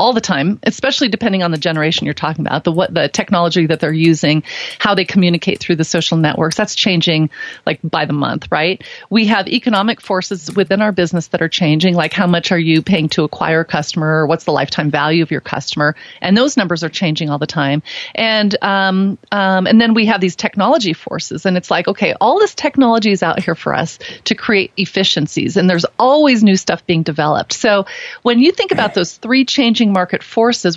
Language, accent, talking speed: English, American, 215 wpm